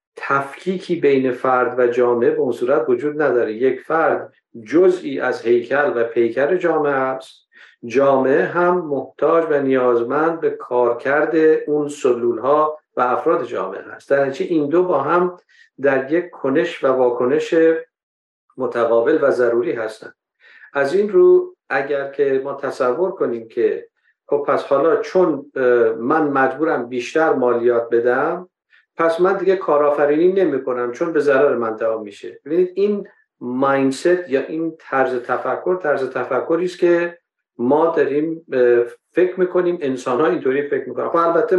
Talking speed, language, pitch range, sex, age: 145 wpm, Persian, 125-185 Hz, male, 50-69